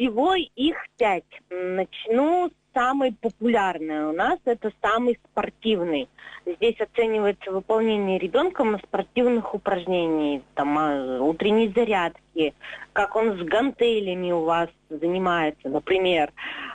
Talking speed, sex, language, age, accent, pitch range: 110 wpm, female, Russian, 20-39, native, 170-235 Hz